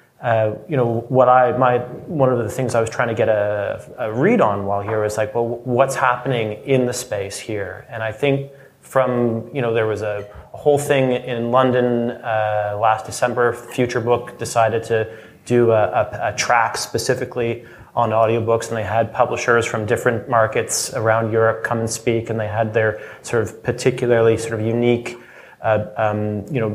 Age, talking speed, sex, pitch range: 30-49, 190 wpm, male, 110-125 Hz